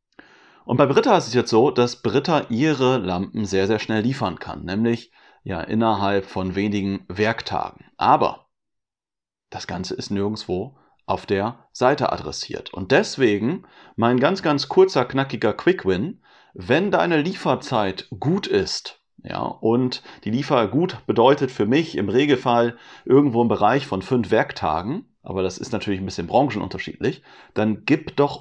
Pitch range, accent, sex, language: 110-140 Hz, German, male, German